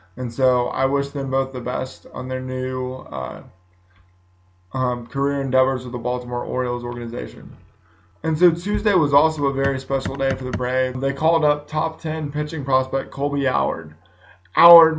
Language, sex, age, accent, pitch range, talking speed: English, male, 20-39, American, 120-140 Hz, 170 wpm